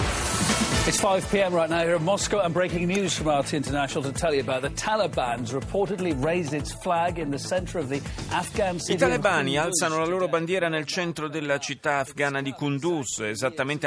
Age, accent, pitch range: 40-59, native, 120-150 Hz